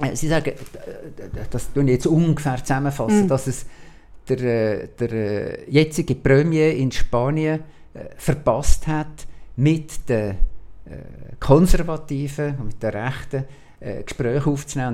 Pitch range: 100-145 Hz